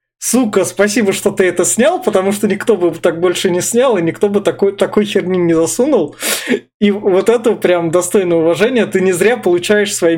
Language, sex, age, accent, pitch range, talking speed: Russian, male, 20-39, native, 160-205 Hz, 195 wpm